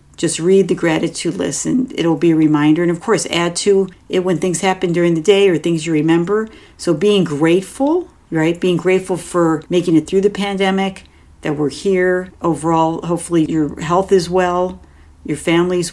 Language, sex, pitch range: English, female, 160-190 Hz